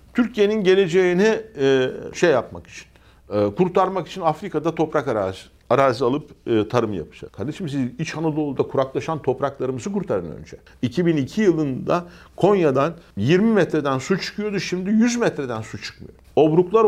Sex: male